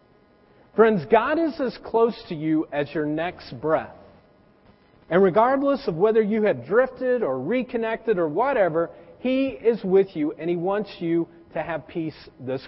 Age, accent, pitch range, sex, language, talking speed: 40-59, American, 170-245 Hz, male, English, 160 wpm